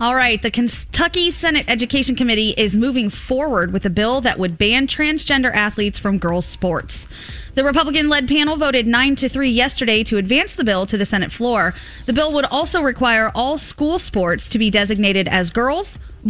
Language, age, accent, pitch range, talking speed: English, 20-39, American, 200-270 Hz, 185 wpm